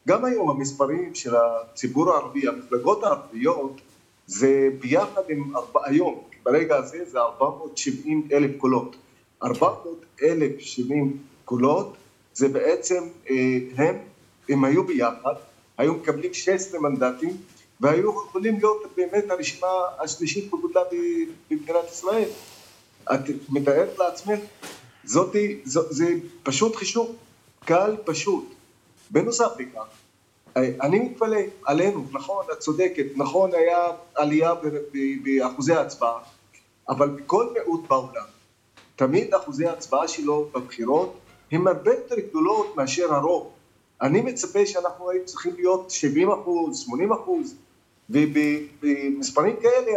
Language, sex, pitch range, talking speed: Hebrew, male, 135-215 Hz, 105 wpm